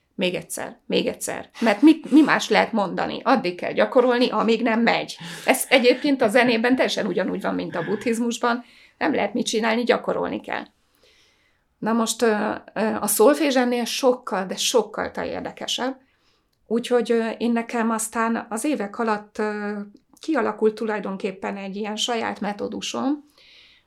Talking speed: 135 wpm